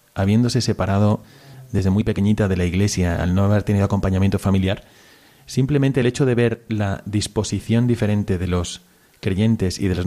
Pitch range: 95-120 Hz